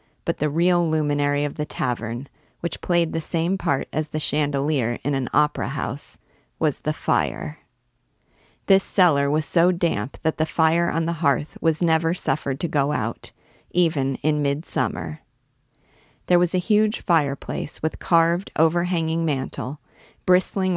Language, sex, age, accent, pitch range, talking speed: English, female, 40-59, American, 140-170 Hz, 150 wpm